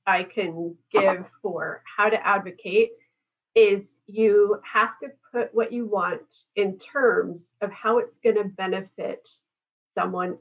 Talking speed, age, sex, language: 140 wpm, 30-49, female, English